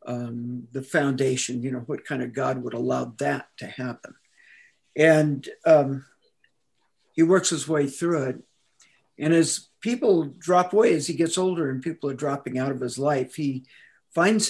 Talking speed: 170 wpm